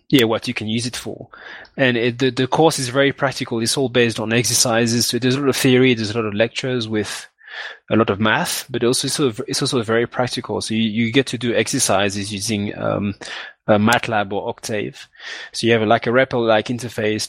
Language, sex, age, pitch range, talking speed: English, male, 20-39, 105-125 Hz, 225 wpm